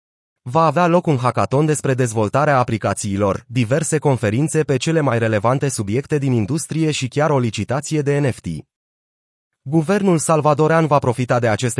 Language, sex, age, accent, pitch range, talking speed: Romanian, male, 30-49, native, 115-150 Hz, 145 wpm